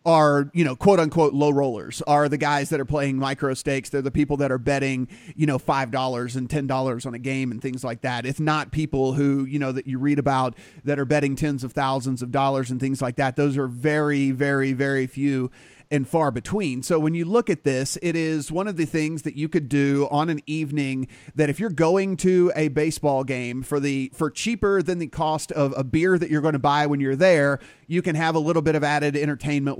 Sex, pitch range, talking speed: male, 135-160 Hz, 240 wpm